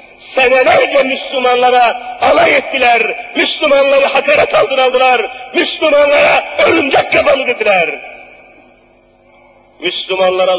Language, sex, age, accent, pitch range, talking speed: Turkish, male, 50-69, native, 245-285 Hz, 70 wpm